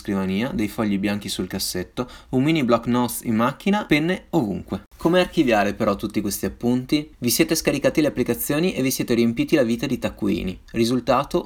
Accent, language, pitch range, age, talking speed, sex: native, Italian, 105-130 Hz, 30-49, 180 wpm, male